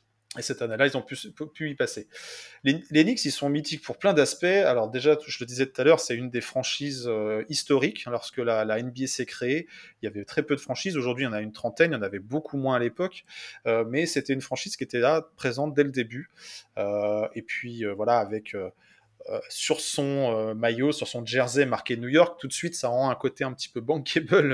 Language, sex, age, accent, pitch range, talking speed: French, male, 20-39, French, 120-150 Hz, 250 wpm